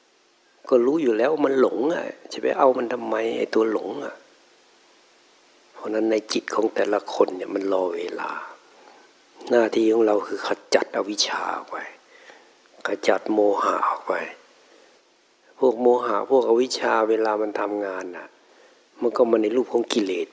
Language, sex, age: Thai, male, 60-79